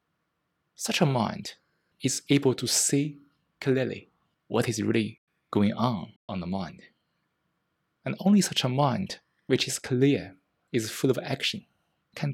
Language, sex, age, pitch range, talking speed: English, male, 20-39, 115-160 Hz, 140 wpm